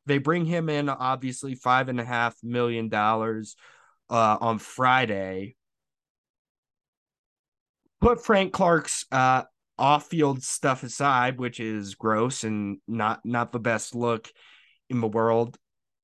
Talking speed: 125 wpm